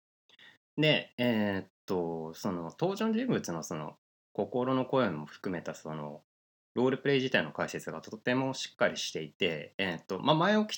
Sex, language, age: male, Japanese, 20-39